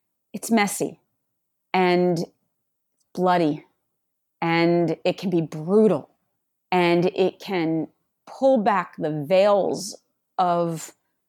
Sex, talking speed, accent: female, 90 wpm, American